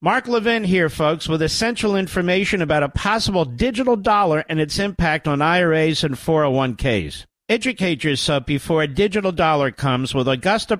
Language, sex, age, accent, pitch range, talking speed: English, male, 50-69, American, 155-210 Hz, 155 wpm